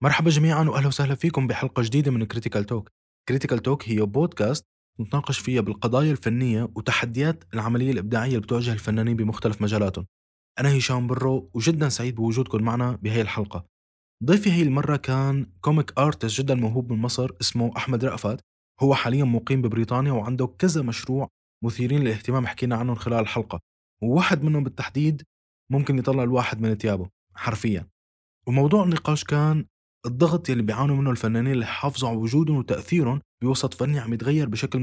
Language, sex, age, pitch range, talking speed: Arabic, male, 20-39, 115-135 Hz, 150 wpm